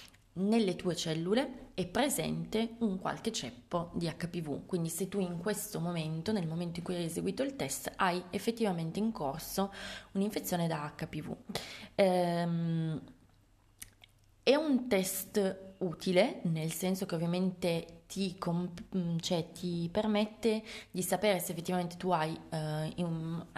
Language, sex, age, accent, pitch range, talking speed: Italian, female, 20-39, native, 165-195 Hz, 125 wpm